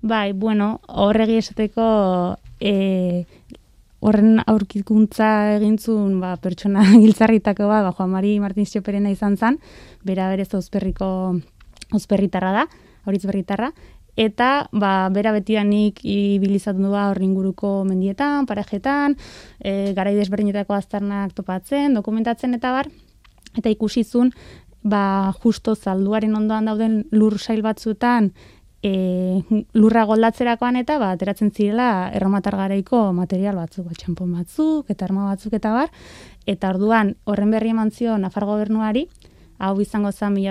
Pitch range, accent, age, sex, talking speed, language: 195-220 Hz, Spanish, 20-39, female, 120 wpm, Spanish